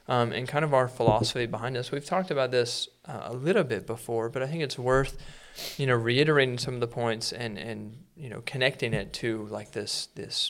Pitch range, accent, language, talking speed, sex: 115-135 Hz, American, English, 225 wpm, male